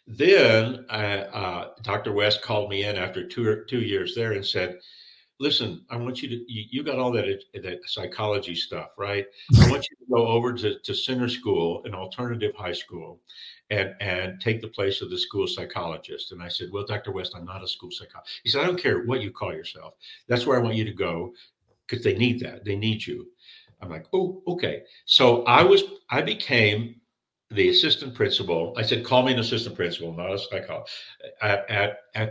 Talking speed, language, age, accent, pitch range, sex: 210 wpm, English, 60-79, American, 100-130 Hz, male